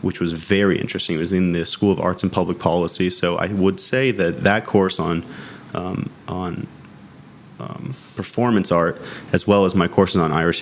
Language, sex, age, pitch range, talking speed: English, male, 30-49, 85-95 Hz, 190 wpm